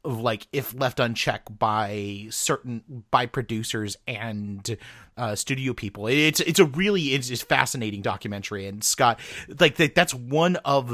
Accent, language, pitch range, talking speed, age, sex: American, English, 110-140 Hz, 150 wpm, 30-49, male